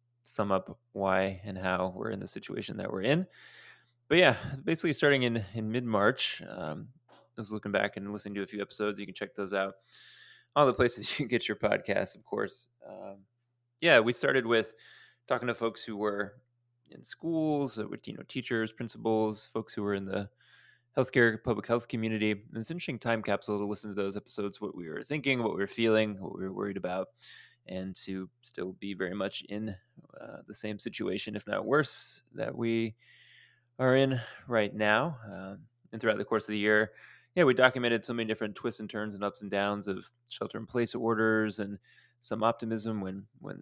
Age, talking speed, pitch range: 20-39, 200 wpm, 100-120 Hz